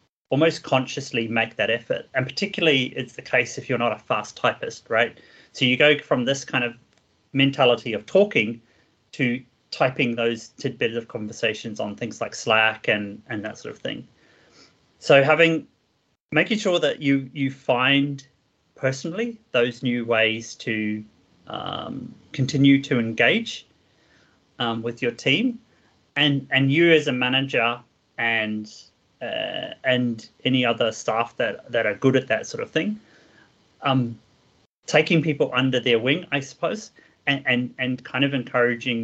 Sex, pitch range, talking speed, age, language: male, 115-140 Hz, 150 wpm, 30-49, English